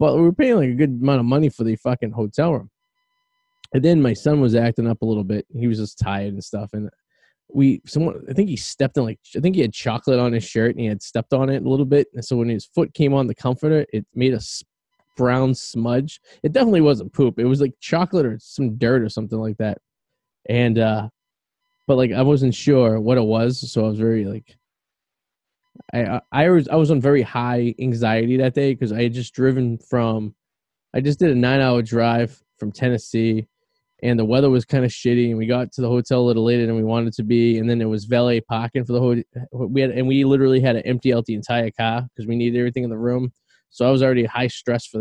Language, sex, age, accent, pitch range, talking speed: English, male, 20-39, American, 115-135 Hz, 245 wpm